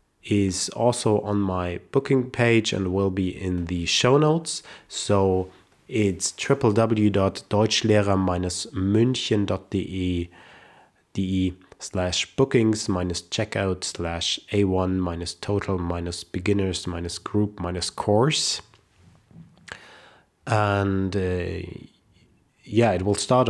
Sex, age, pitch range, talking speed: male, 20-39, 95-120 Hz, 90 wpm